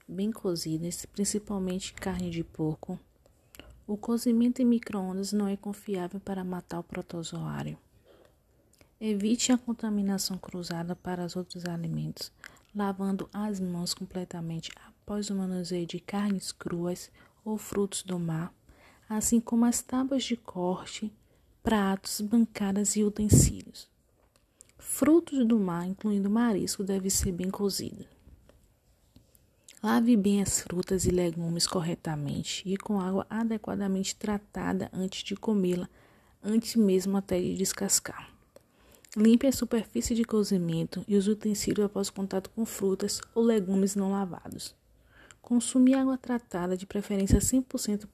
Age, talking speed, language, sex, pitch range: 40-59, 125 wpm, Portuguese, female, 180-220 Hz